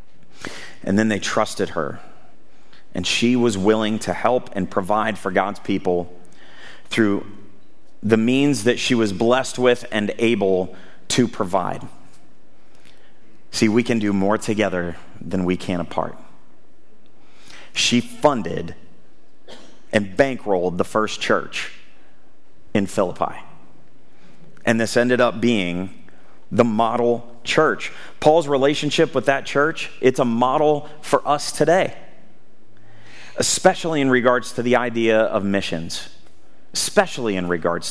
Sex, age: male, 30-49